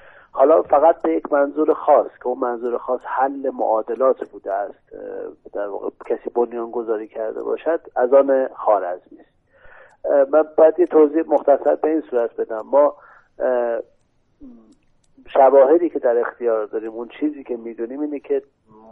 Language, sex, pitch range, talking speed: Persian, male, 115-155 Hz, 145 wpm